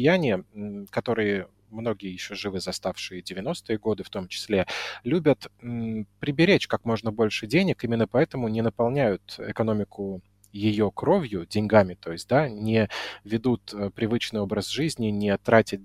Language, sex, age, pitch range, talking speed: Russian, male, 20-39, 105-120 Hz, 130 wpm